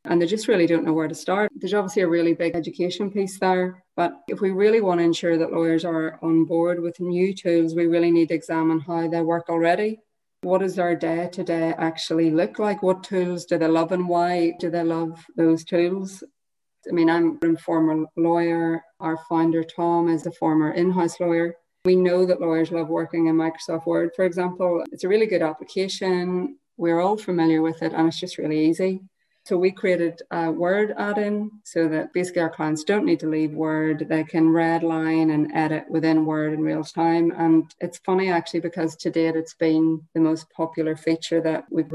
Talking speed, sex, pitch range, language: 200 wpm, female, 165-180 Hz, English